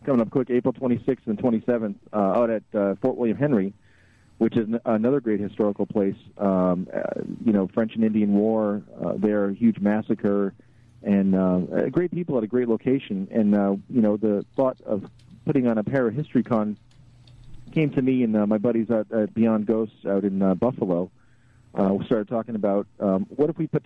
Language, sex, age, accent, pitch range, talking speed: English, male, 40-59, American, 105-120 Hz, 200 wpm